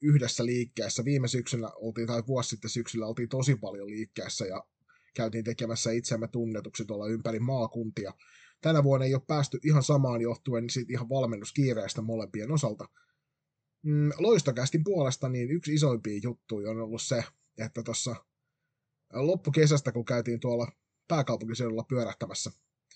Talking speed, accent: 130 wpm, native